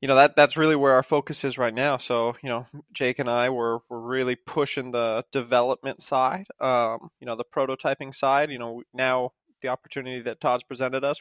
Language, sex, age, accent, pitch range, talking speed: English, male, 20-39, American, 120-135 Hz, 210 wpm